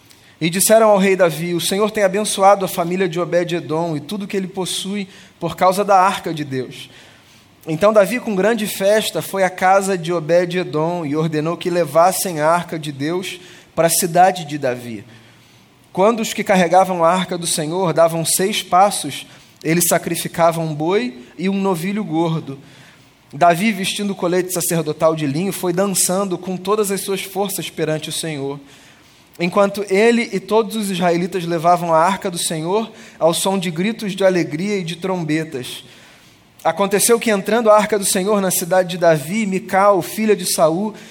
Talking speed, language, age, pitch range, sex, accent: 175 wpm, Portuguese, 20-39, 160-200 Hz, male, Brazilian